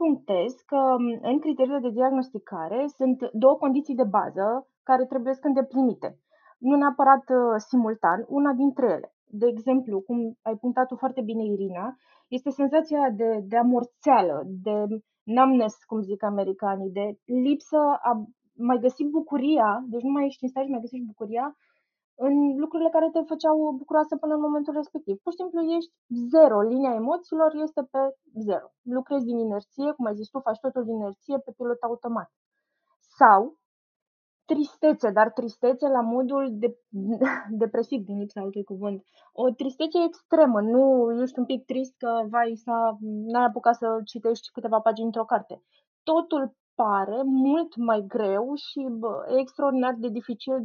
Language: Romanian